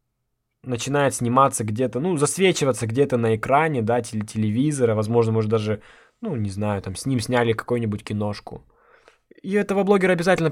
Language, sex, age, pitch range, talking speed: Russian, male, 20-39, 115-145 Hz, 155 wpm